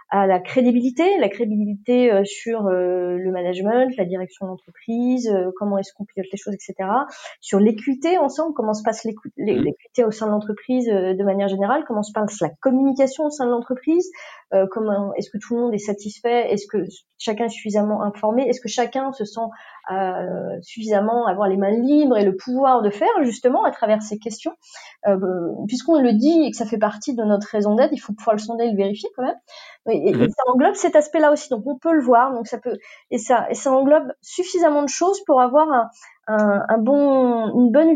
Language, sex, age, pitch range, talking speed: French, female, 30-49, 210-285 Hz, 210 wpm